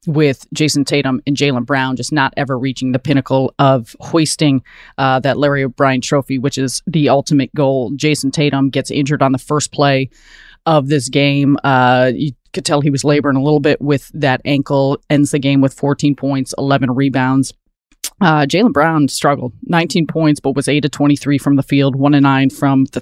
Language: English